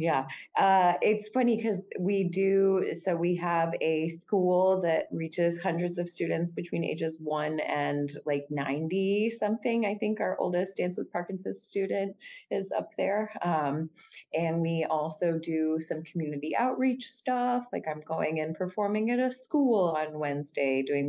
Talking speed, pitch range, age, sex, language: 155 wpm, 150-195 Hz, 20-39, female, English